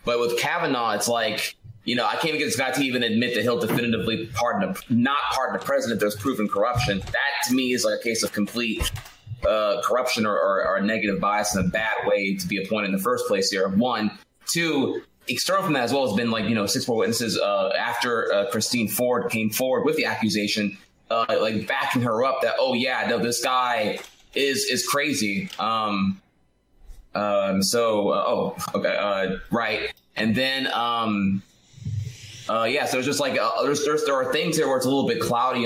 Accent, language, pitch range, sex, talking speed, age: American, English, 105-125 Hz, male, 210 wpm, 20-39